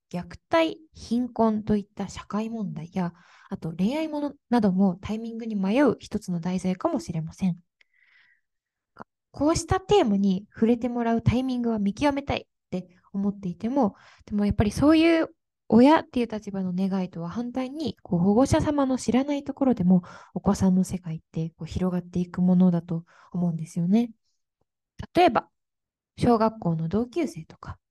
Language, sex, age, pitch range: Japanese, female, 20-39, 185-280 Hz